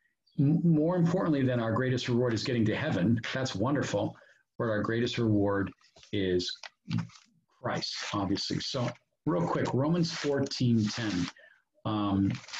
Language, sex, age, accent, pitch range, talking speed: English, male, 40-59, American, 110-135 Hz, 125 wpm